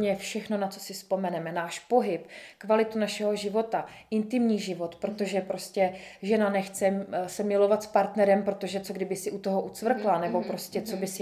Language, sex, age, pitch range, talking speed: Slovak, female, 20-39, 180-205 Hz, 165 wpm